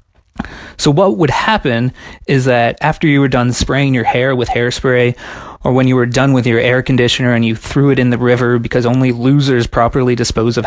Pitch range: 120-150 Hz